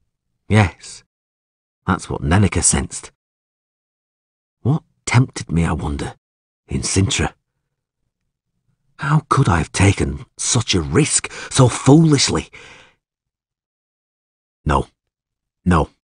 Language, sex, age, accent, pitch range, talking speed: English, male, 50-69, British, 75-115 Hz, 90 wpm